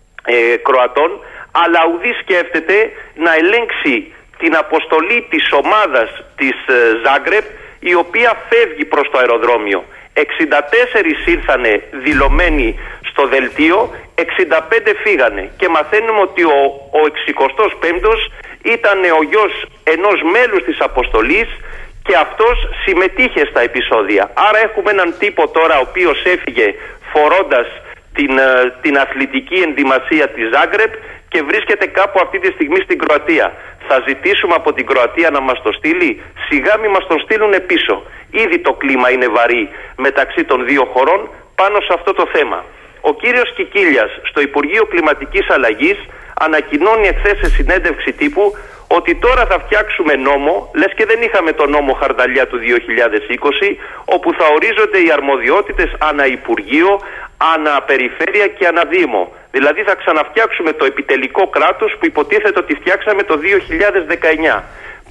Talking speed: 135 wpm